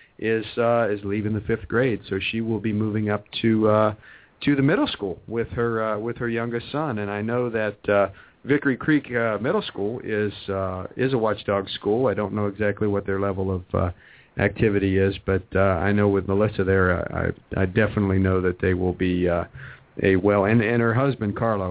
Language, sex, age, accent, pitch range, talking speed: English, male, 50-69, American, 100-120 Hz, 210 wpm